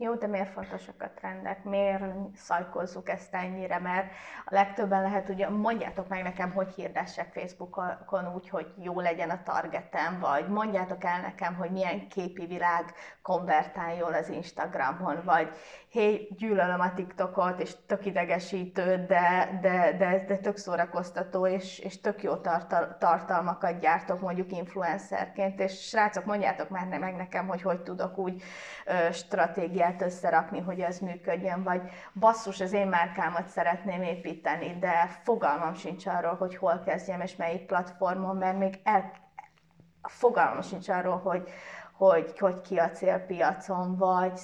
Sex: female